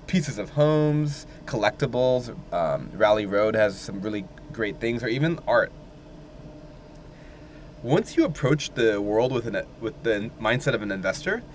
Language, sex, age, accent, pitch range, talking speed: English, male, 20-39, American, 115-155 Hz, 145 wpm